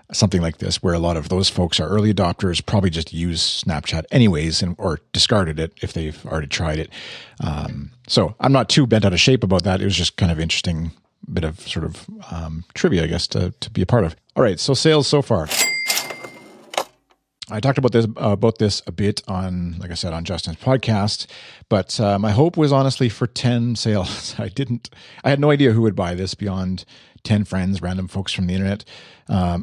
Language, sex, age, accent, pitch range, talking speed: English, male, 40-59, American, 90-115 Hz, 215 wpm